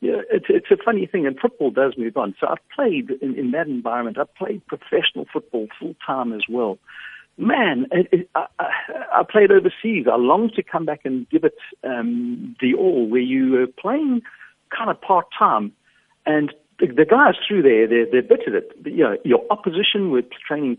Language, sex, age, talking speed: English, male, 60-79, 185 wpm